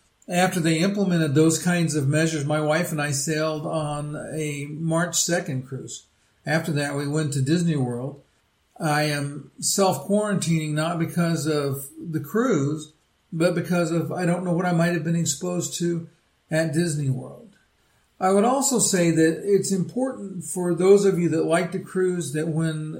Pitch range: 150-180 Hz